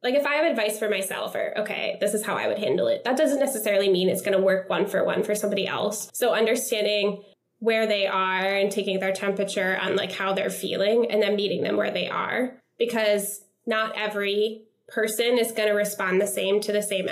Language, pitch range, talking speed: English, 200-225 Hz, 225 wpm